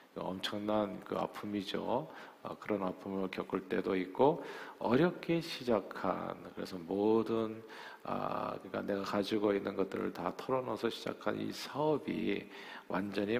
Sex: male